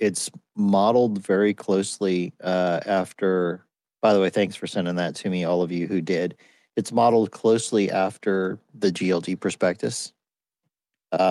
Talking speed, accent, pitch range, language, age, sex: 150 wpm, American, 90-105 Hz, English, 40-59, male